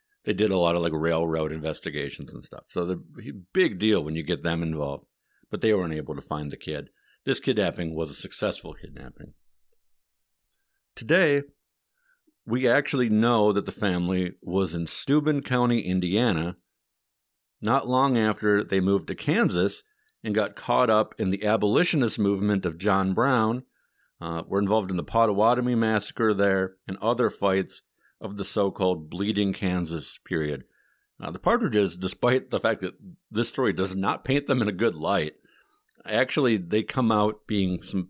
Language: English